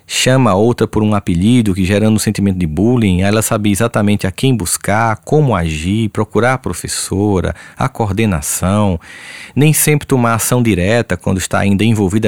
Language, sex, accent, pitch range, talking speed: Portuguese, male, Brazilian, 90-135 Hz, 165 wpm